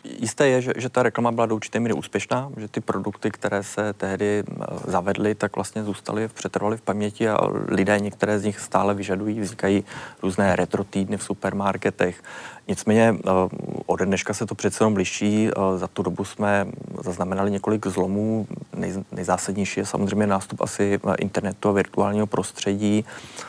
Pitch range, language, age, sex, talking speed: 95-105 Hz, Czech, 30-49, male, 155 wpm